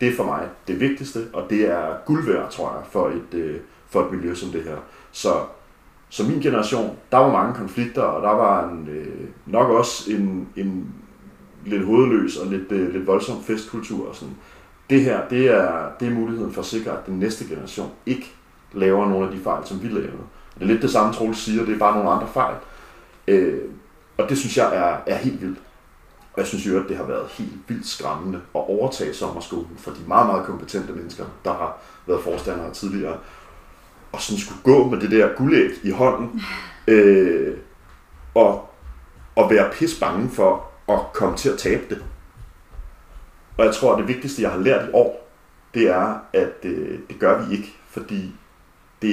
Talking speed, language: 200 wpm, Danish